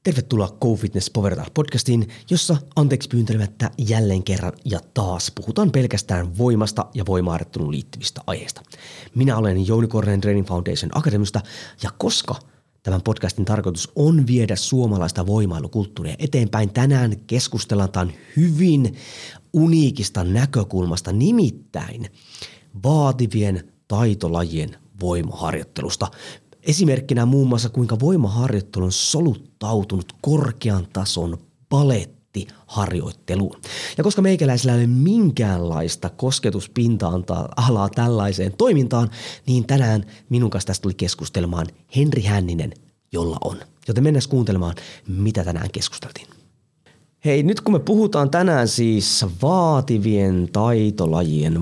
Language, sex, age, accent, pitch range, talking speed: Finnish, male, 30-49, native, 95-135 Hz, 105 wpm